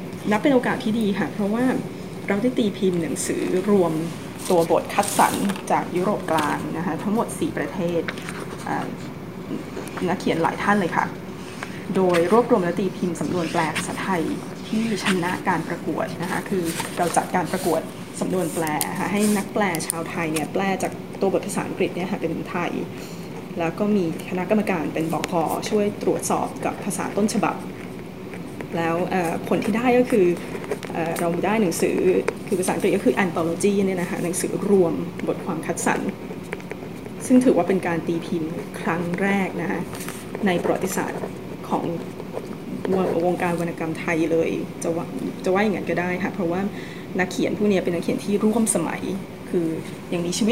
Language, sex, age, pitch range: Thai, female, 20-39, 170-205 Hz